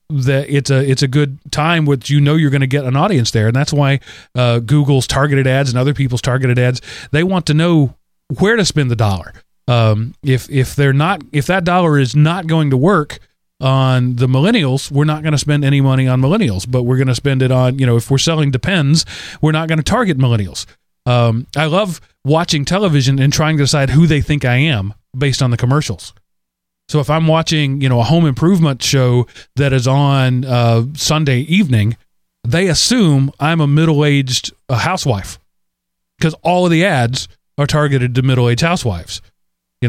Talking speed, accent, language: 205 wpm, American, English